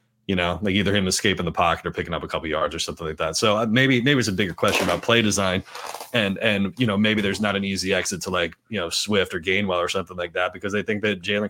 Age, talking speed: 30-49, 280 wpm